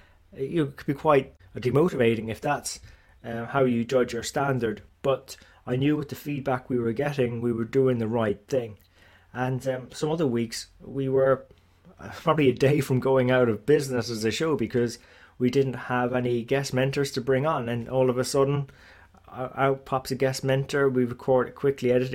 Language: English